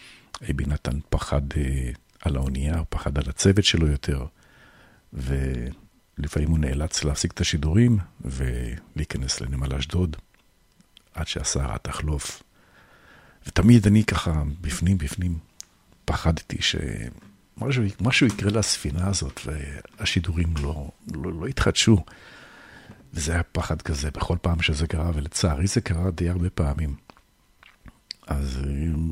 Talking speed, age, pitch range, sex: 110 wpm, 50-69, 70-95 Hz, male